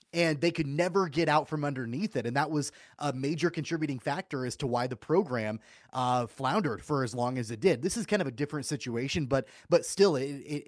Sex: male